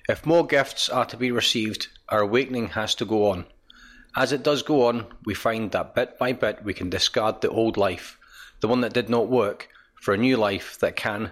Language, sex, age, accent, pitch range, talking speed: English, male, 40-59, British, 100-120 Hz, 225 wpm